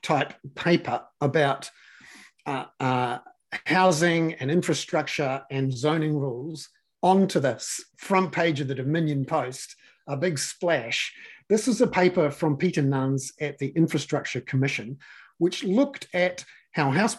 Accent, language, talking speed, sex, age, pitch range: Australian, English, 135 wpm, male, 50-69, 135-175 Hz